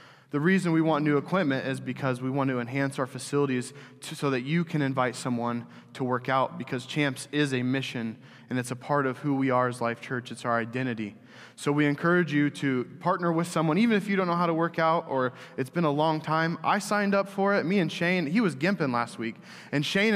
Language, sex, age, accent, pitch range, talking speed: English, male, 20-39, American, 125-155 Hz, 240 wpm